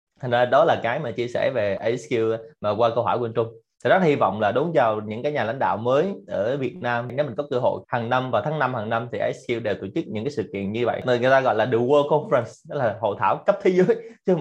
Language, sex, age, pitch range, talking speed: Vietnamese, male, 20-39, 110-145 Hz, 295 wpm